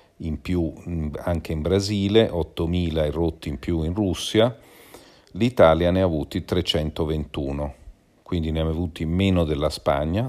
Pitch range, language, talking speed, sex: 75-95 Hz, Italian, 145 wpm, male